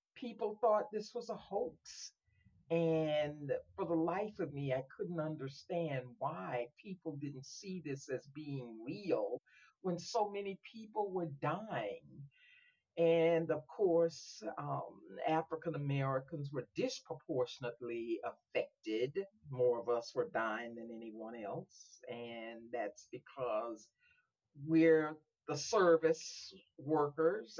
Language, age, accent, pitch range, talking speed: English, 50-69, American, 130-165 Hz, 115 wpm